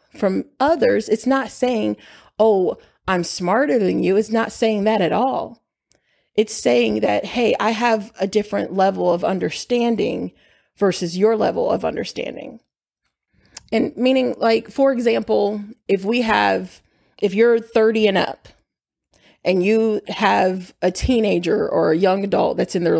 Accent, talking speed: American, 150 wpm